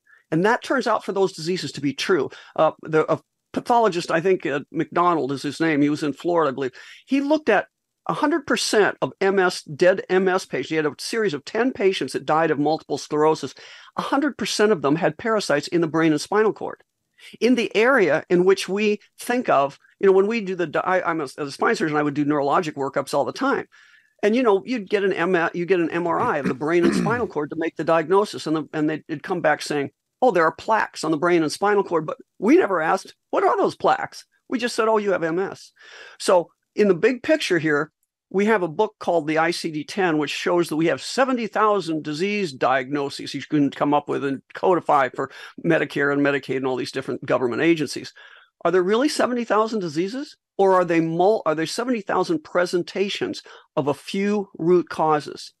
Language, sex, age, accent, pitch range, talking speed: English, male, 50-69, American, 155-215 Hz, 215 wpm